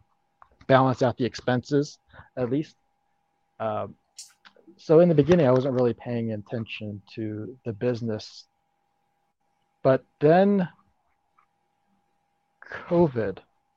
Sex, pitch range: male, 115-150 Hz